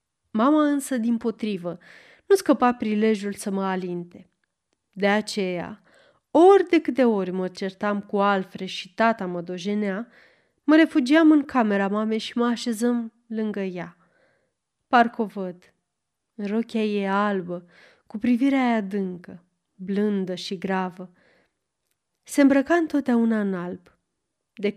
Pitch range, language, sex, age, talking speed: 190-235 Hz, Romanian, female, 20-39, 130 wpm